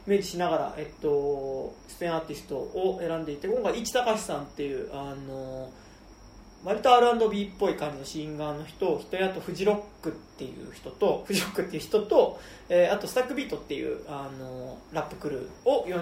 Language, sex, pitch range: Japanese, male, 145-195 Hz